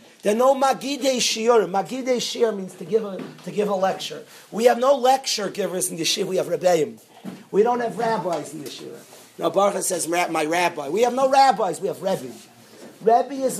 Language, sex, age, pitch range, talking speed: English, male, 40-59, 190-245 Hz, 195 wpm